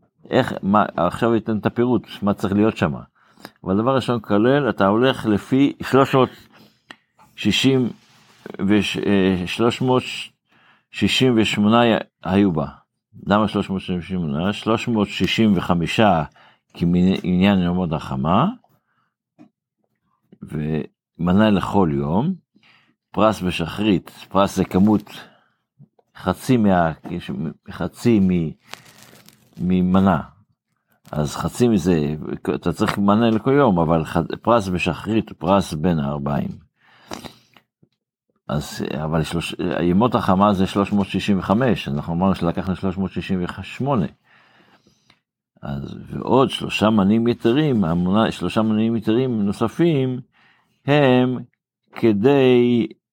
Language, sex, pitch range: Hebrew, male, 90-115 Hz